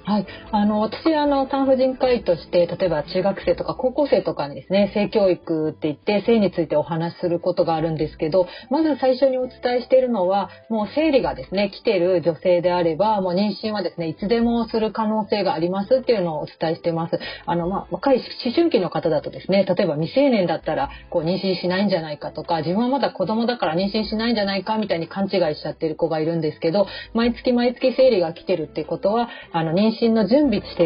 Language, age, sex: Japanese, 30-49, female